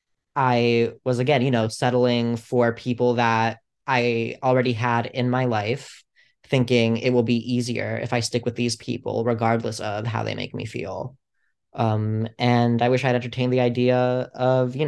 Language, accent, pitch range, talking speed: English, American, 115-125 Hz, 175 wpm